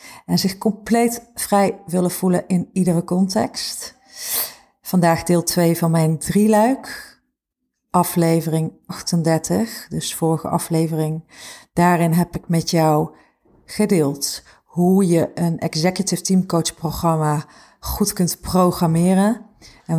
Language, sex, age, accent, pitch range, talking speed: Dutch, female, 40-59, Dutch, 165-200 Hz, 110 wpm